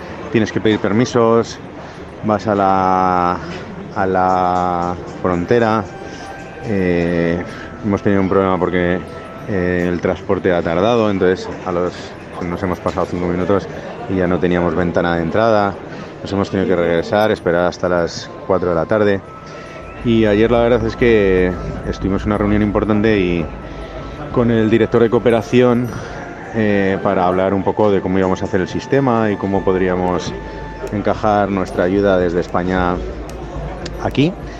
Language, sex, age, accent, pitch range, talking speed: Spanish, male, 30-49, Spanish, 85-105 Hz, 145 wpm